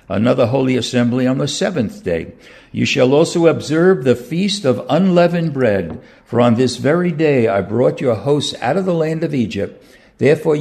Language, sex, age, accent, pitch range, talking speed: English, male, 60-79, American, 110-150 Hz, 180 wpm